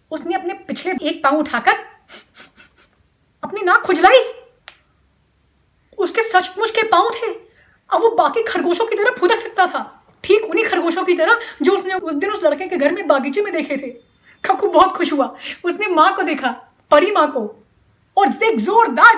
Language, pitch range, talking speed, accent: Hindi, 255-375 Hz, 170 wpm, native